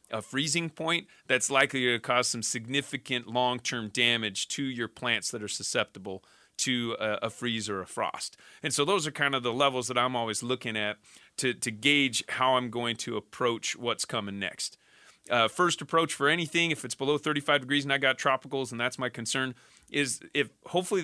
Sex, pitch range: male, 115-140 Hz